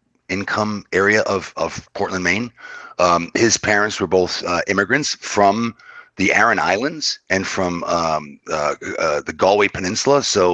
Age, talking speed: 40-59, 150 wpm